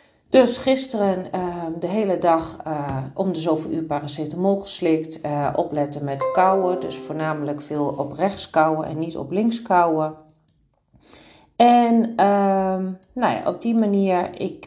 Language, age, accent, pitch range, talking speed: Dutch, 40-59, Dutch, 155-220 Hz, 145 wpm